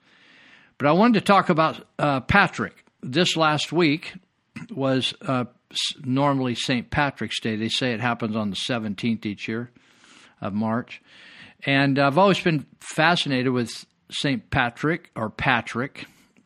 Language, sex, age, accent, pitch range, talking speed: English, male, 50-69, American, 115-145 Hz, 140 wpm